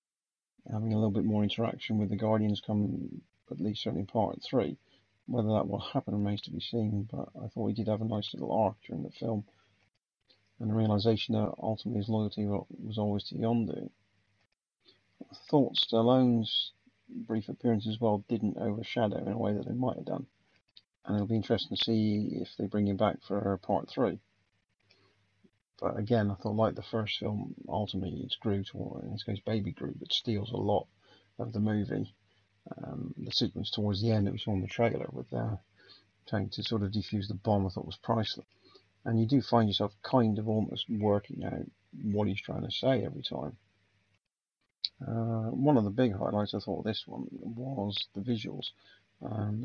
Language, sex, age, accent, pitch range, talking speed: English, male, 40-59, British, 100-115 Hz, 190 wpm